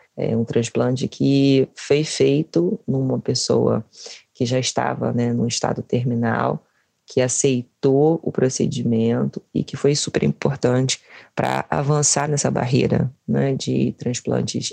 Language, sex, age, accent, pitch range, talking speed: Portuguese, female, 20-39, Brazilian, 120-145 Hz, 120 wpm